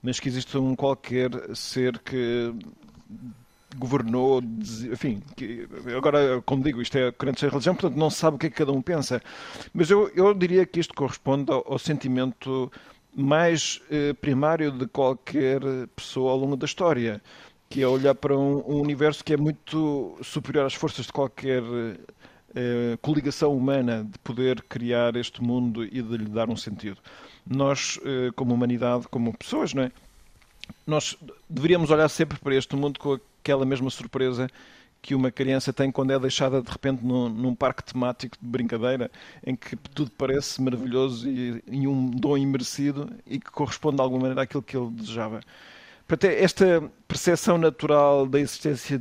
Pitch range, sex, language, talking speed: 125-145 Hz, male, Portuguese, 170 wpm